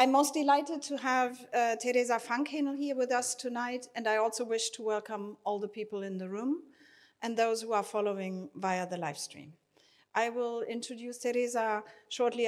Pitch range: 195-245 Hz